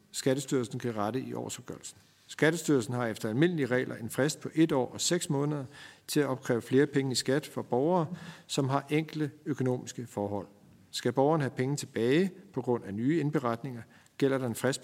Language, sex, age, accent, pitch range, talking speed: Danish, male, 50-69, native, 120-150 Hz, 185 wpm